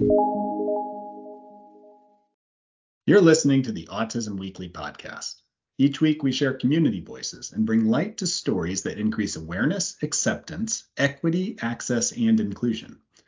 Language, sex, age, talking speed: English, male, 40-59, 120 wpm